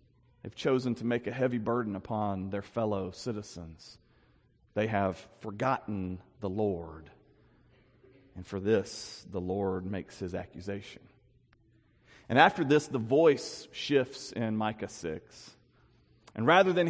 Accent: American